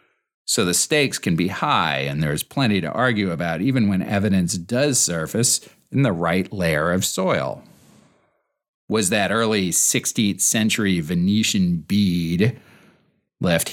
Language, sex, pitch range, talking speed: English, male, 80-120 Hz, 135 wpm